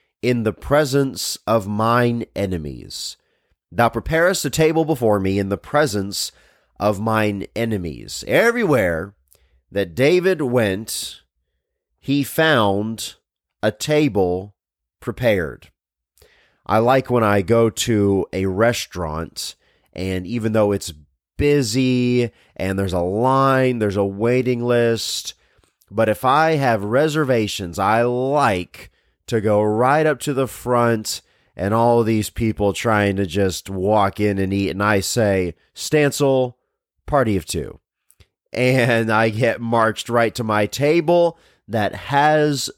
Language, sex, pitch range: English, male, 95-125 Hz